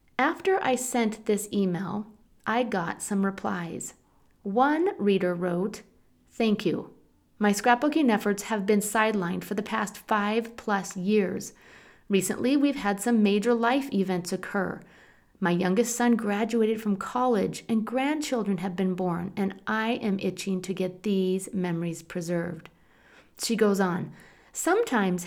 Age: 40-59